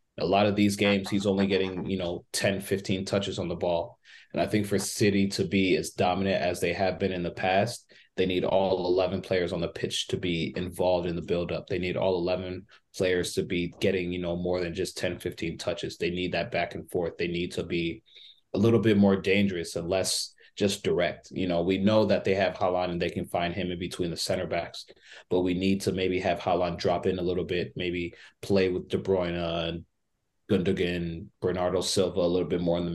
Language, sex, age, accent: English, male, 30-49, American